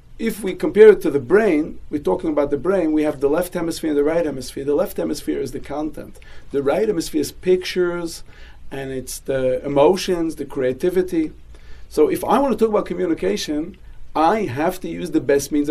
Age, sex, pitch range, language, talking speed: 40-59, male, 140-190 Hz, English, 205 wpm